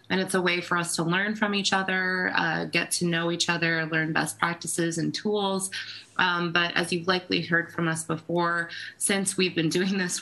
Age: 20-39